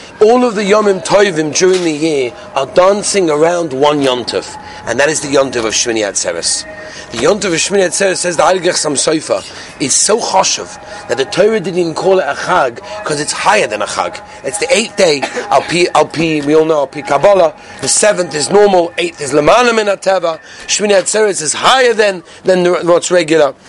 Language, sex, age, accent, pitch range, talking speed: English, male, 40-59, British, 155-200 Hz, 190 wpm